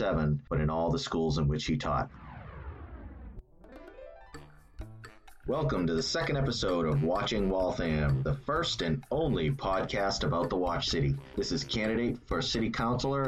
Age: 30-49